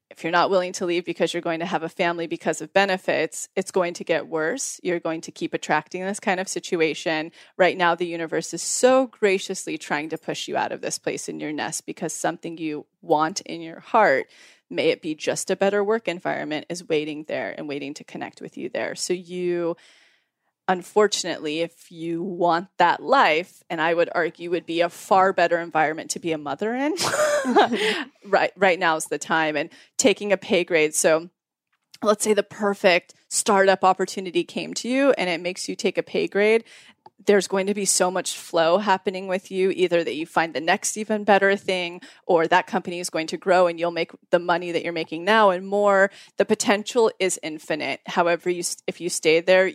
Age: 20-39